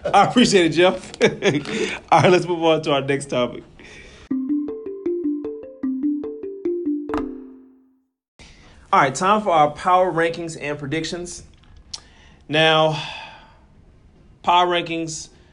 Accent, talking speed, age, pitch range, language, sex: American, 95 wpm, 30-49, 115-170 Hz, English, male